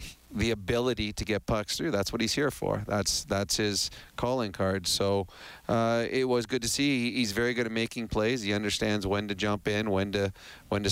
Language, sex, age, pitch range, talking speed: English, male, 30-49, 100-115 Hz, 215 wpm